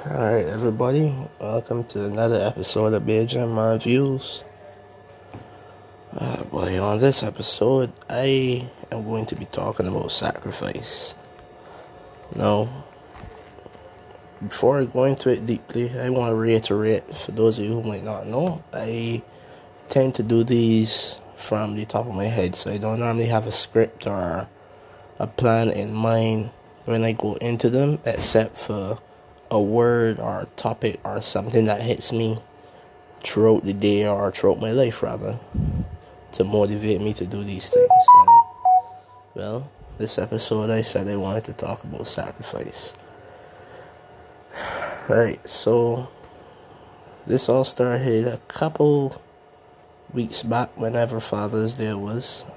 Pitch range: 105-125 Hz